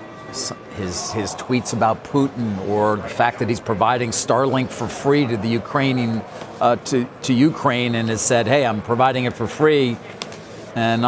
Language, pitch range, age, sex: English, 120-150 Hz, 50-69, male